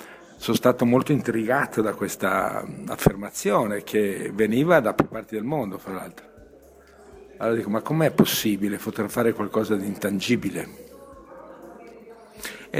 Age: 50-69